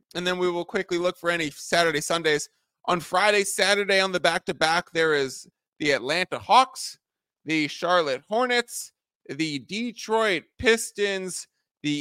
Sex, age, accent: male, 20-39, American